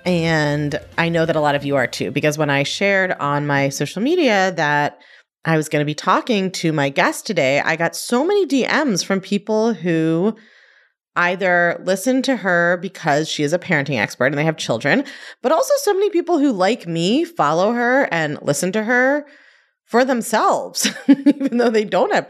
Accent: American